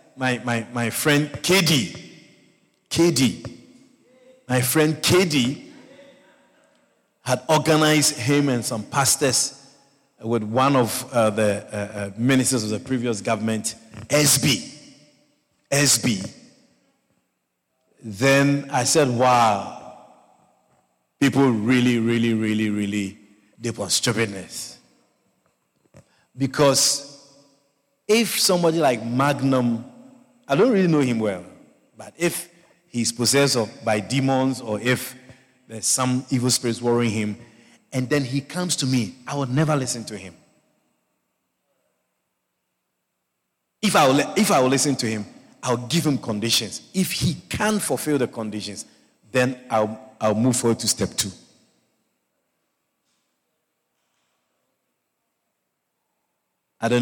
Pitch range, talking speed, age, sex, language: 110-140 Hz, 115 wpm, 50-69, male, English